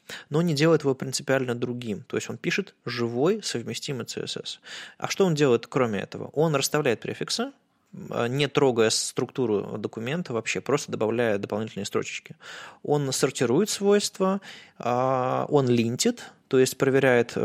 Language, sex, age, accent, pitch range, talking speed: Russian, male, 20-39, native, 120-165 Hz, 135 wpm